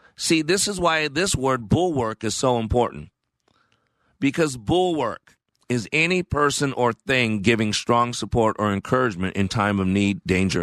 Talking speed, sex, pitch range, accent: 150 wpm, male, 95-140 Hz, American